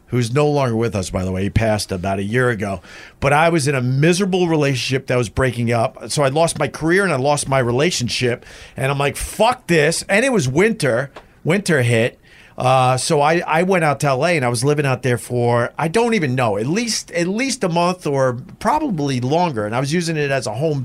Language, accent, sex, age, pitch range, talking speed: English, American, male, 50-69, 130-170 Hz, 235 wpm